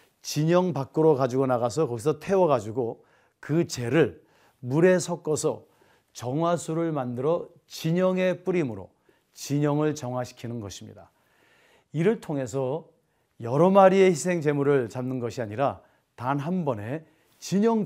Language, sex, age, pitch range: Korean, male, 40-59, 130-180 Hz